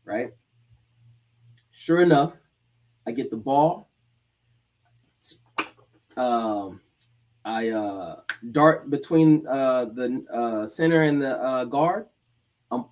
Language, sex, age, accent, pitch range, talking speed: English, male, 20-39, American, 120-160 Hz, 100 wpm